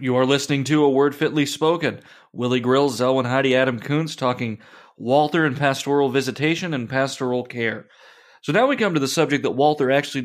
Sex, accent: male, American